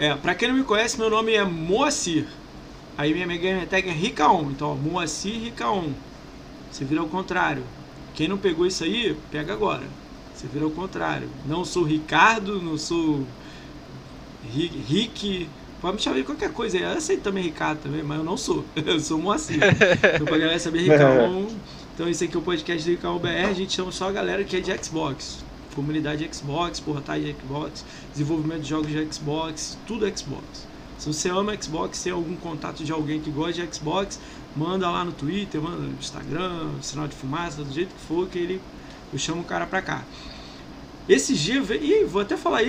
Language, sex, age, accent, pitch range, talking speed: Portuguese, male, 20-39, Brazilian, 155-195 Hz, 195 wpm